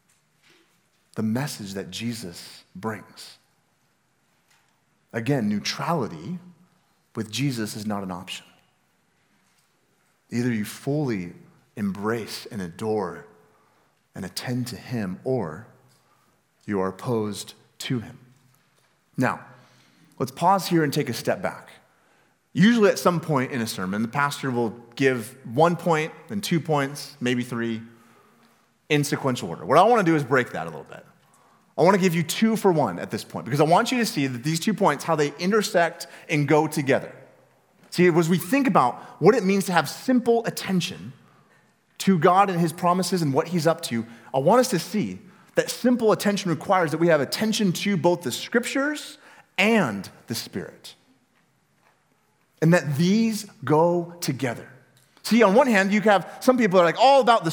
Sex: male